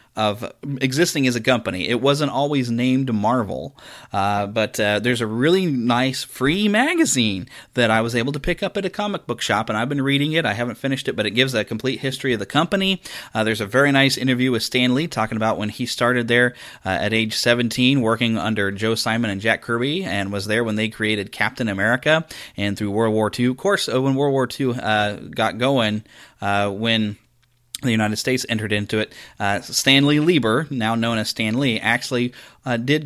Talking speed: 210 wpm